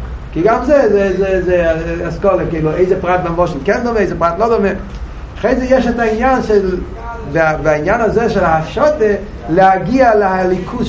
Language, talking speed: Hebrew, 150 wpm